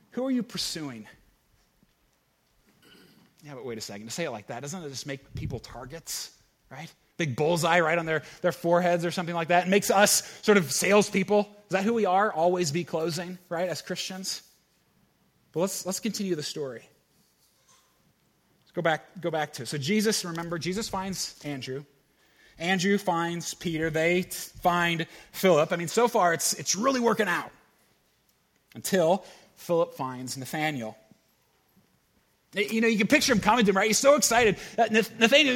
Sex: male